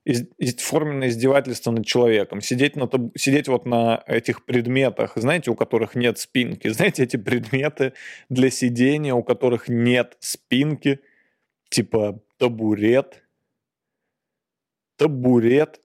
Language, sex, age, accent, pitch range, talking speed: Russian, male, 20-39, native, 125-170 Hz, 115 wpm